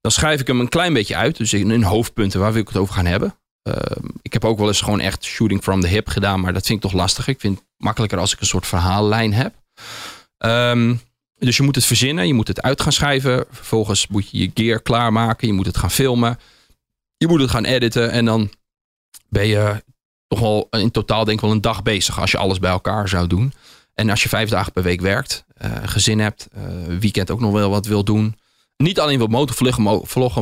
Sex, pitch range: male, 105-120 Hz